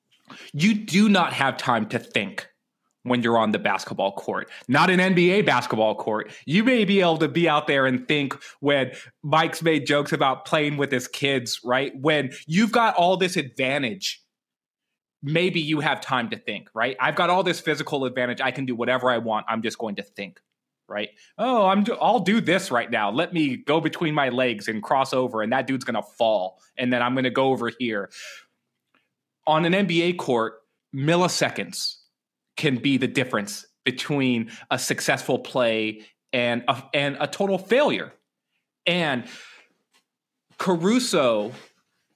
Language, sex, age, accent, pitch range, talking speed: English, male, 20-39, American, 125-170 Hz, 175 wpm